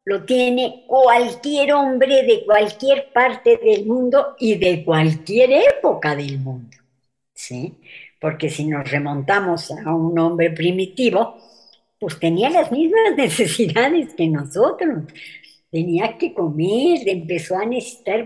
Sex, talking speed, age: male, 120 wpm, 60-79